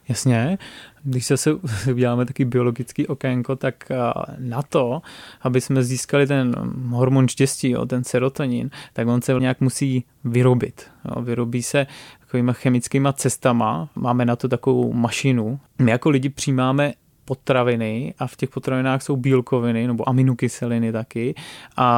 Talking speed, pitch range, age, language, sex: 135 wpm, 125-140 Hz, 20-39, Czech, male